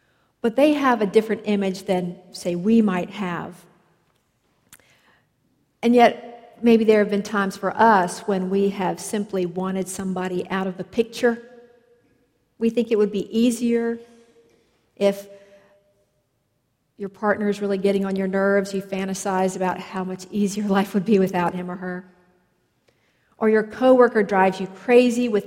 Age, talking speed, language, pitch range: 50-69, 155 wpm, English, 190-225 Hz